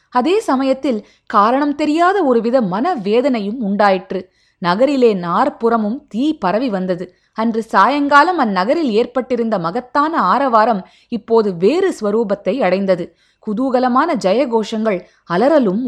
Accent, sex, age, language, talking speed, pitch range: native, female, 20-39, Tamil, 100 wpm, 205-280 Hz